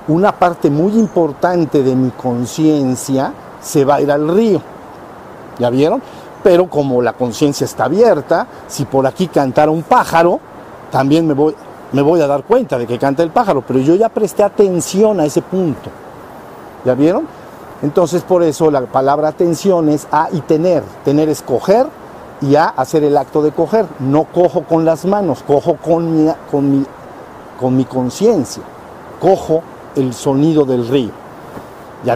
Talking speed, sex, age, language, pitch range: 165 wpm, male, 50-69, Spanish, 135-175 Hz